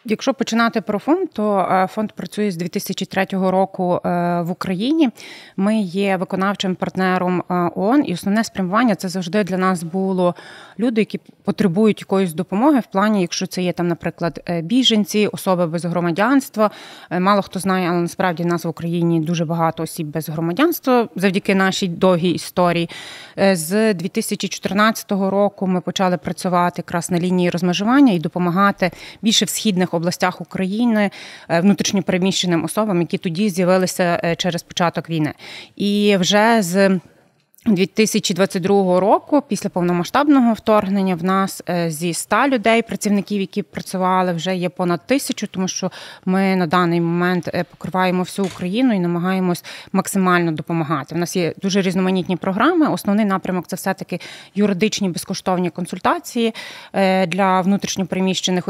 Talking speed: 135 wpm